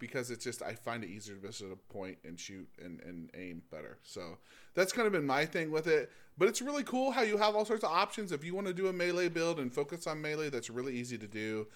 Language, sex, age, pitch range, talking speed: English, male, 20-39, 115-175 Hz, 275 wpm